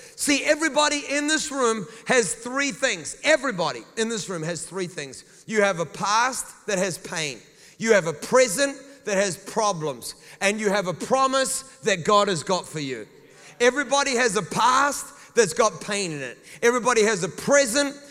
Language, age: English, 30-49